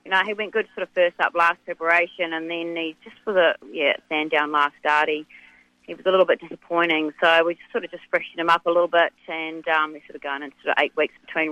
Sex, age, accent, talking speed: female, 30-49, Australian, 275 wpm